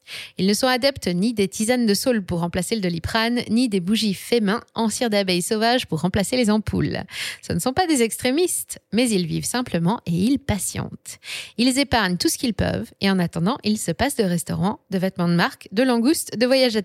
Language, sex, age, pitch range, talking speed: French, female, 20-39, 180-230 Hz, 215 wpm